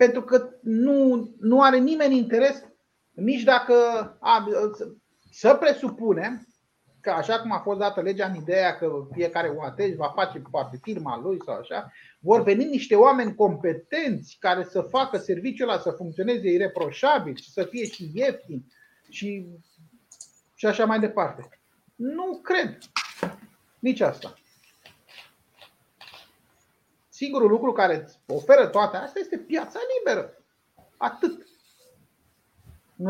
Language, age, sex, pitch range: Romanian, 30-49, male, 185-275 Hz